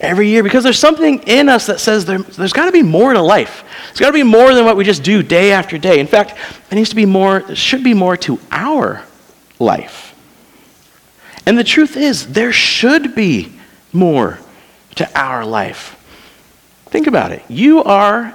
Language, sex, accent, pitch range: English, male, American, 180-255 Hz